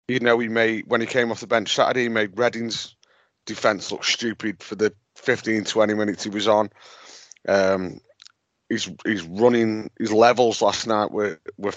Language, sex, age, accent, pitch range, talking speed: English, male, 30-49, British, 105-120 Hz, 180 wpm